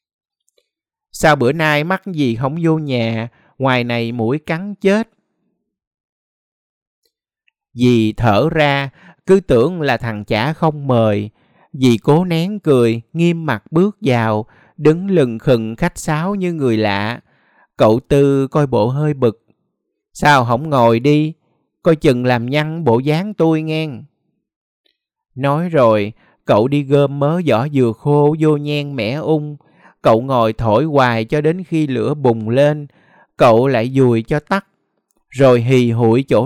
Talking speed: 145 wpm